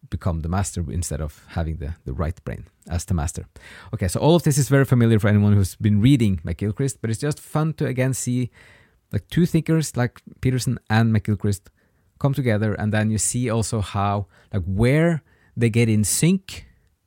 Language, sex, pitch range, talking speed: English, male, 95-130 Hz, 195 wpm